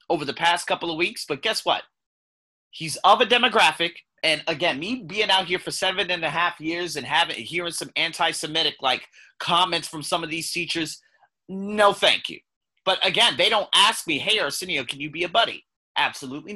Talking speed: 195 wpm